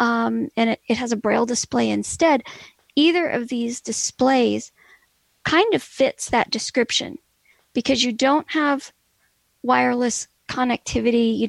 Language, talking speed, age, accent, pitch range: English, 130 wpm, 40-59, American, 245-280 Hz